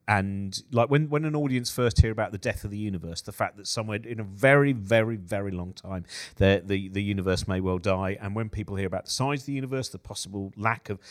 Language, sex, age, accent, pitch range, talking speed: English, male, 40-59, British, 95-115 Hz, 250 wpm